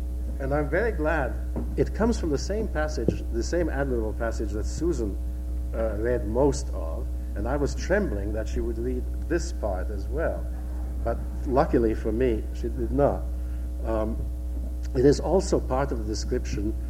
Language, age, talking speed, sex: English, 60-79, 165 wpm, male